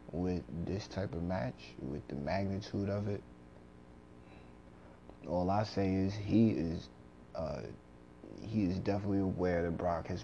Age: 30-49